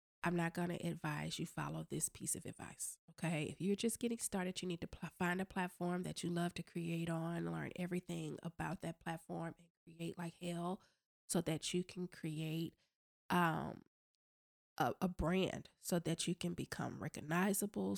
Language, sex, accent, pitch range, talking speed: English, female, American, 165-185 Hz, 175 wpm